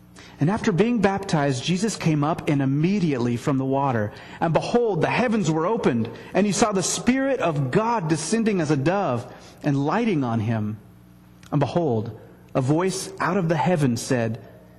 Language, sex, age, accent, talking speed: English, male, 30-49, American, 170 wpm